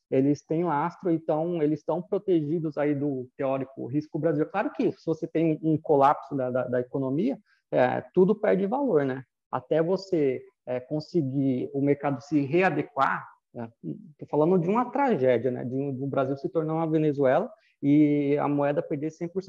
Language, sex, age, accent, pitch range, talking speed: Portuguese, male, 20-39, Brazilian, 140-180 Hz, 180 wpm